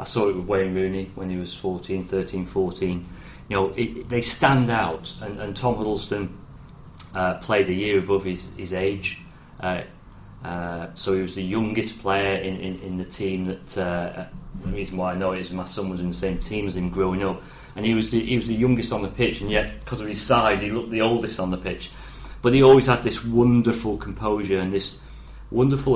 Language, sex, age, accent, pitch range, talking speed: English, male, 30-49, British, 90-115 Hz, 225 wpm